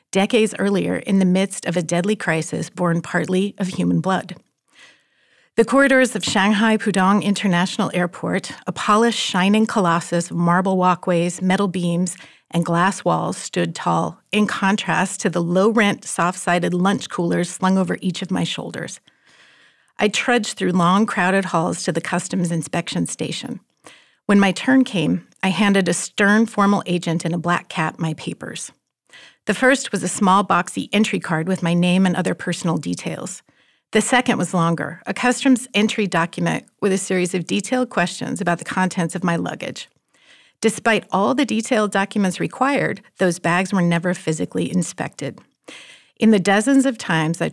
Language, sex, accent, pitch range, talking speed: English, female, American, 175-210 Hz, 165 wpm